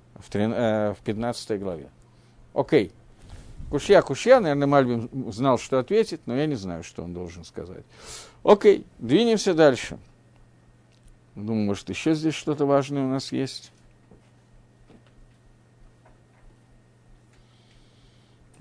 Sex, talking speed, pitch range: male, 105 wpm, 115-160 Hz